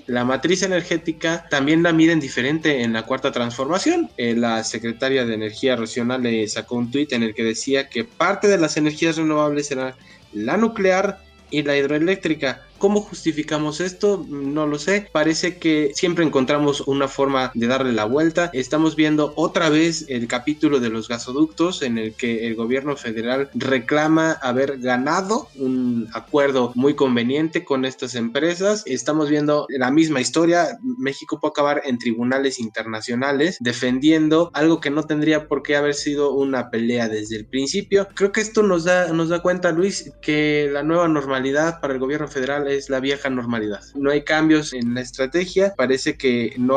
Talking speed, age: 170 wpm, 20-39